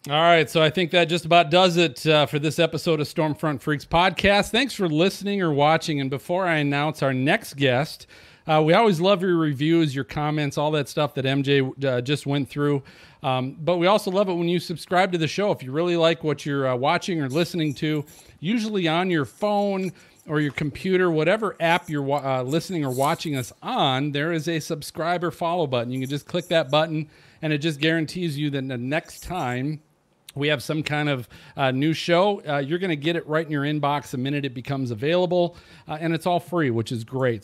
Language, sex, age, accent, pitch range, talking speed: English, male, 40-59, American, 145-175 Hz, 225 wpm